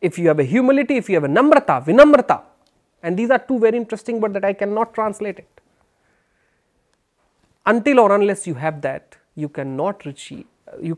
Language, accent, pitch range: Hindi, native, 170-270 Hz